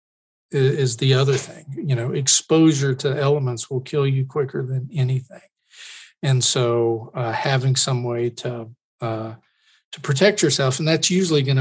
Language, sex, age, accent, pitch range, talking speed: English, male, 40-59, American, 125-145 Hz, 155 wpm